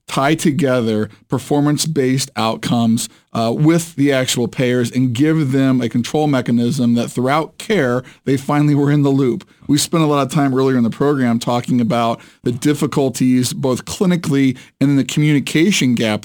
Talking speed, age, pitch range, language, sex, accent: 165 wpm, 40-59, 125-155 Hz, English, male, American